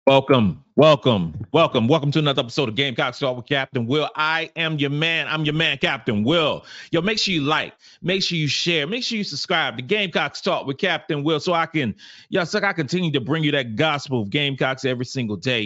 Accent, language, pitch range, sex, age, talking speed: American, English, 120-155 Hz, male, 30-49, 220 wpm